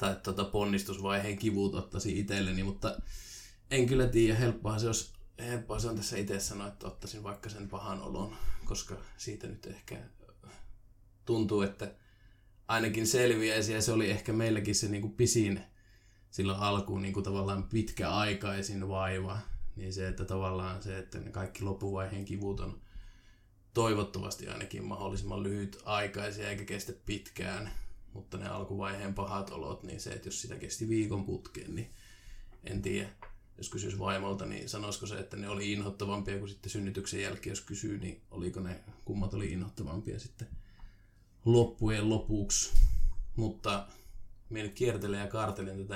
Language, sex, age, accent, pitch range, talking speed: Finnish, male, 20-39, native, 95-105 Hz, 140 wpm